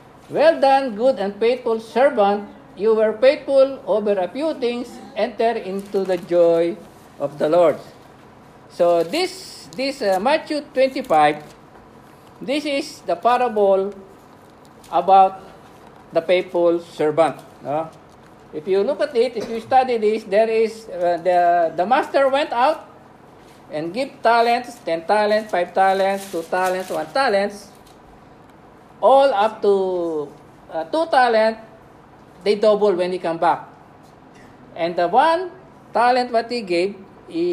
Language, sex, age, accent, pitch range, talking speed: English, male, 50-69, Filipino, 185-270 Hz, 135 wpm